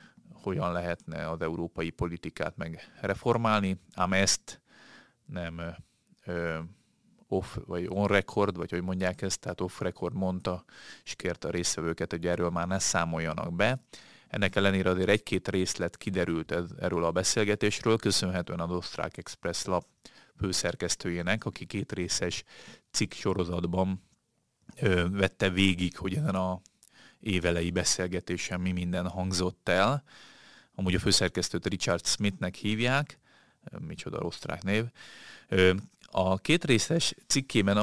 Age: 30-49